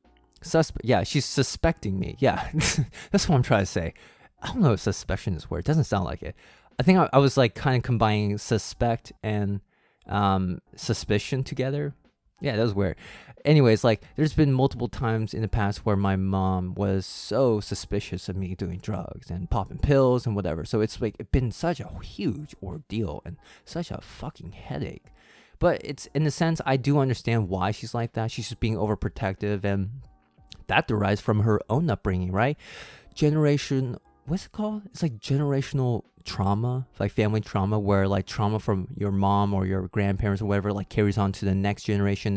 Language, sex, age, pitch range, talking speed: English, male, 20-39, 100-125 Hz, 190 wpm